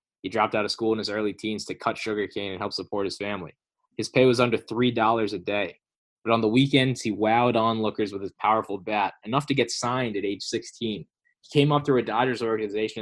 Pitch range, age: 105-130 Hz, 20-39